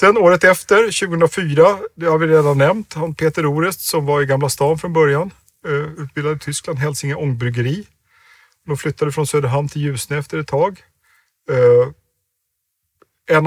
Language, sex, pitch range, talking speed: Swedish, male, 120-155 Hz, 145 wpm